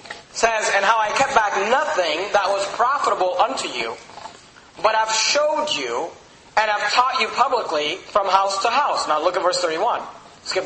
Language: English